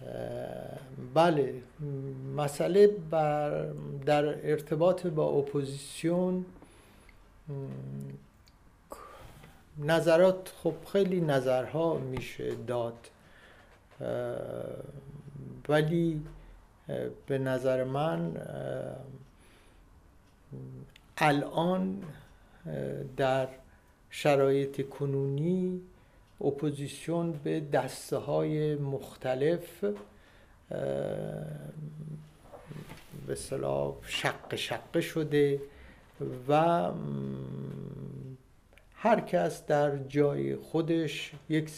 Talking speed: 55 wpm